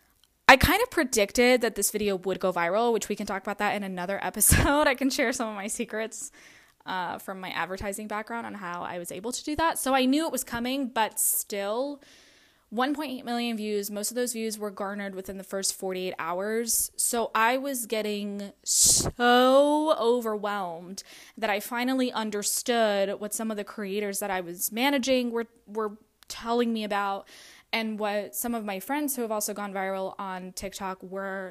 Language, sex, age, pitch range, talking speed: English, female, 10-29, 195-245 Hz, 190 wpm